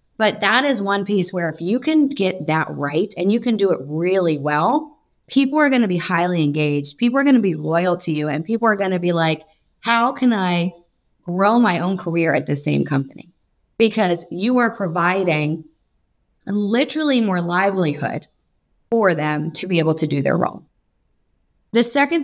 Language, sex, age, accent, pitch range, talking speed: English, female, 30-49, American, 165-230 Hz, 190 wpm